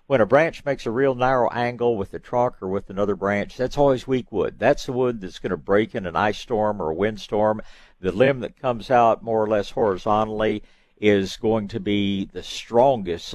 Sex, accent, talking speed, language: male, American, 215 wpm, English